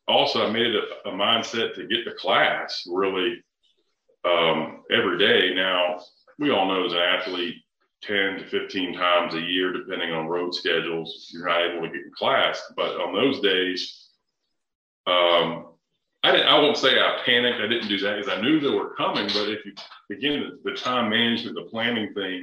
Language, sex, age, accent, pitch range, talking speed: English, male, 40-59, American, 85-115 Hz, 190 wpm